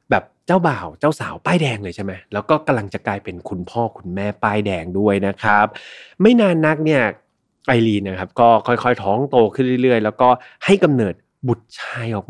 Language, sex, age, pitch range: Thai, male, 30-49, 105-150 Hz